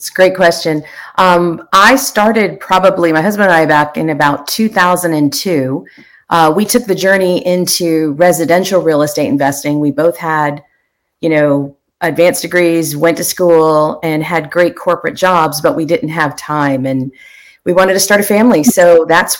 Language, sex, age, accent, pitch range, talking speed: English, female, 40-59, American, 155-190 Hz, 170 wpm